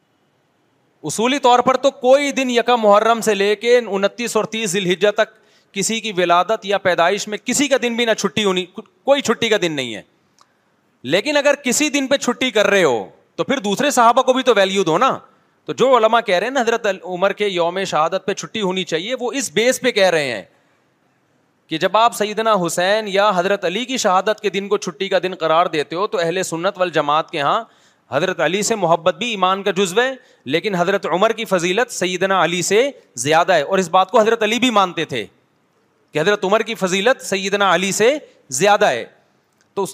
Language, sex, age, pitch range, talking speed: Urdu, male, 30-49, 180-235 Hz, 210 wpm